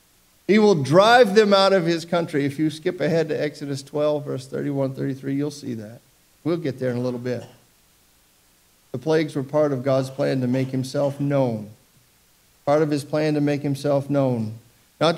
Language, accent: English, American